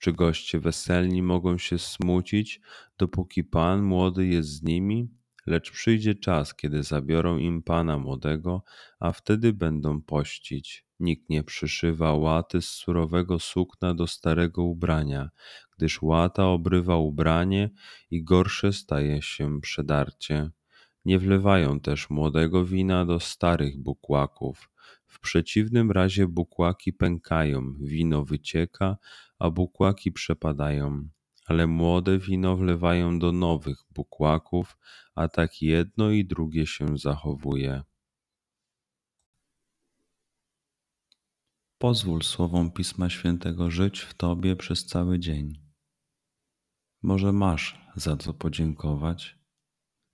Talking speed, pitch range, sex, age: 110 wpm, 75-95 Hz, male, 30-49